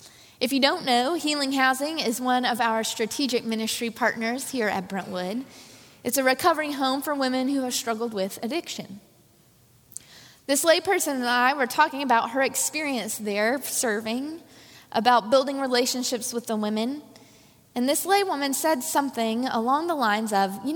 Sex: female